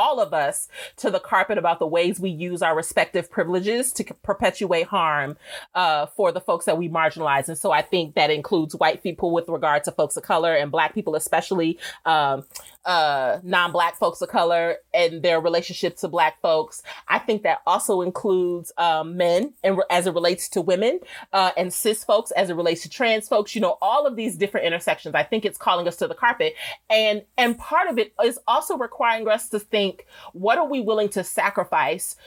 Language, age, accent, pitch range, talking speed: English, 30-49, American, 175-235 Hz, 205 wpm